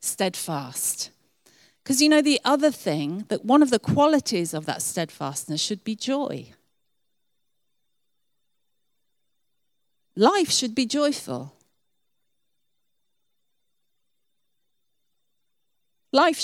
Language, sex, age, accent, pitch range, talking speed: English, female, 40-59, British, 180-290 Hz, 85 wpm